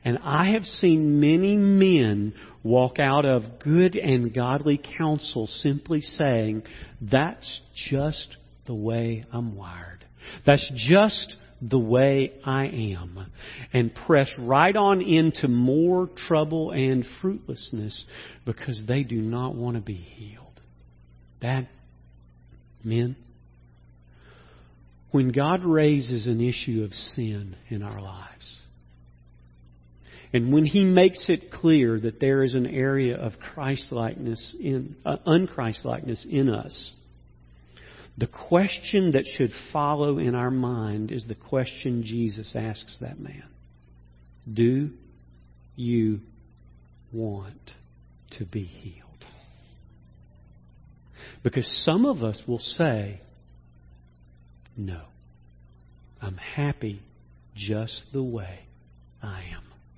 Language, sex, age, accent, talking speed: English, male, 50-69, American, 110 wpm